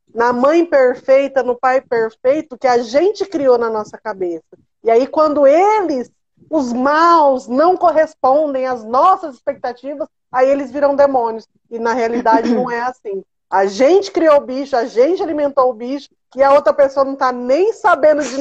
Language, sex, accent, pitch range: Portuguese, female, Brazilian, 220-285 Hz